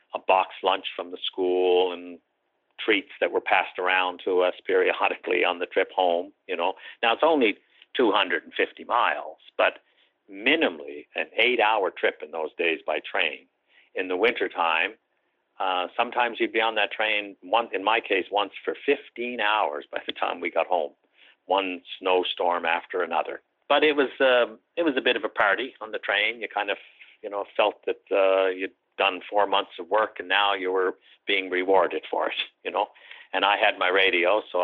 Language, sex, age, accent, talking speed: English, male, 60-79, American, 195 wpm